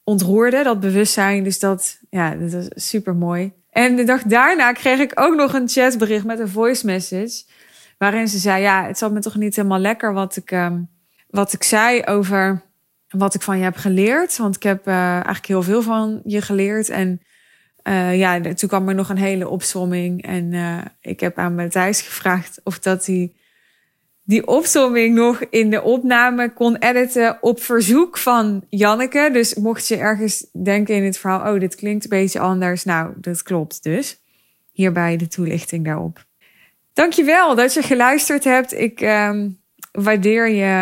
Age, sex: 20-39, female